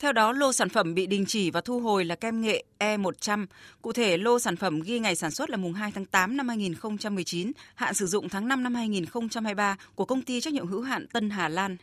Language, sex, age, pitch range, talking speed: Vietnamese, female, 20-39, 180-230 Hz, 245 wpm